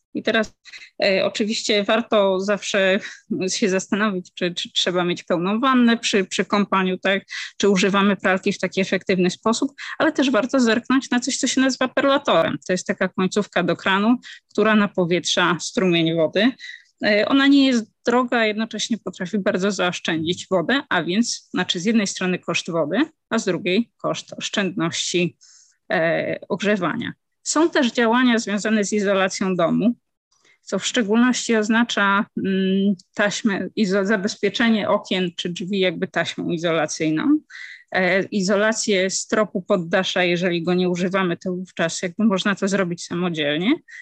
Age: 20-39